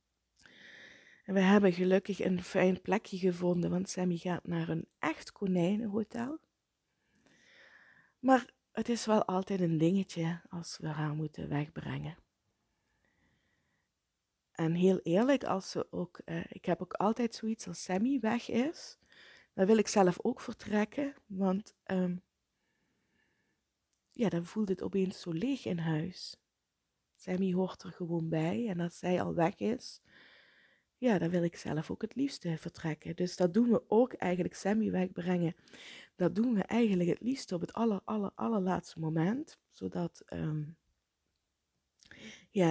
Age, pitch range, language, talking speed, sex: 20-39, 165-210 Hz, Dutch, 145 wpm, female